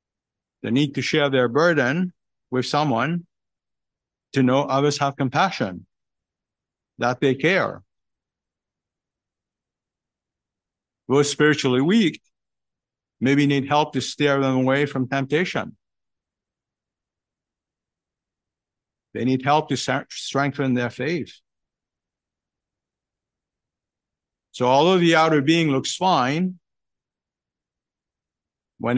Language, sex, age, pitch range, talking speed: English, male, 50-69, 120-150 Hz, 90 wpm